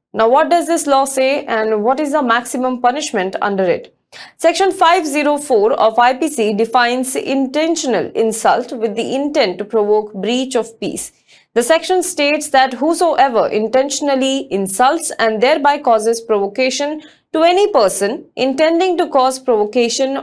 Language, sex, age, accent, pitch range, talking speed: English, female, 20-39, Indian, 225-295 Hz, 140 wpm